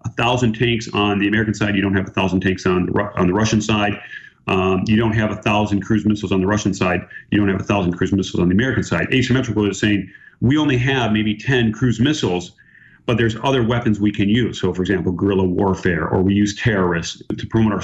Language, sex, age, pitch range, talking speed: English, male, 40-59, 100-120 Hz, 240 wpm